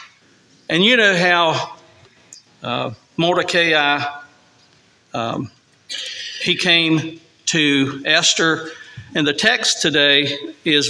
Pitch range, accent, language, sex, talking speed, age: 145-185 Hz, American, English, male, 90 wpm, 50-69